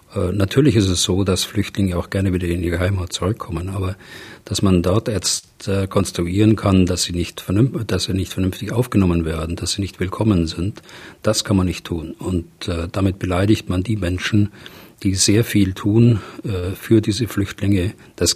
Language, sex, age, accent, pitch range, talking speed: German, male, 40-59, German, 95-110 Hz, 175 wpm